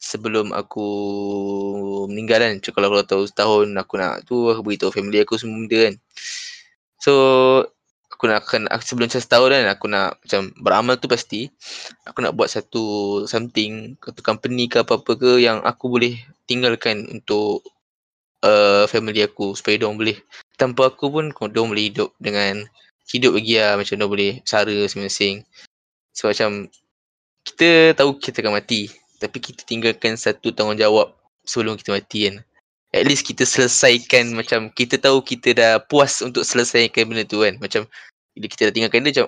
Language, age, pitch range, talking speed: Malay, 10-29, 105-125 Hz, 160 wpm